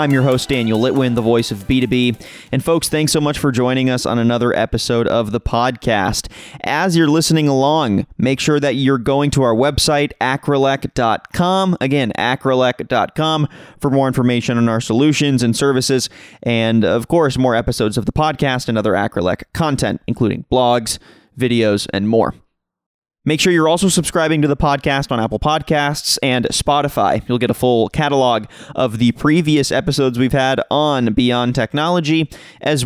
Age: 30-49